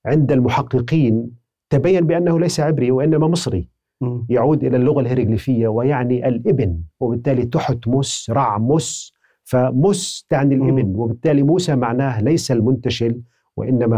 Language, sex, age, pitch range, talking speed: Arabic, male, 40-59, 110-145 Hz, 115 wpm